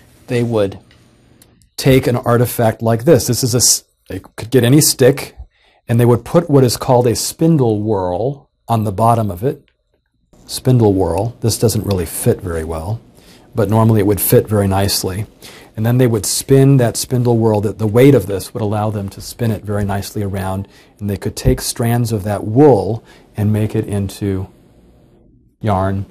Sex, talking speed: male, 185 wpm